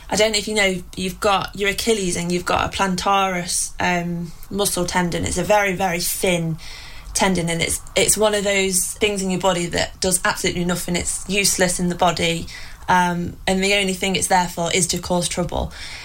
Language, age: English, 20-39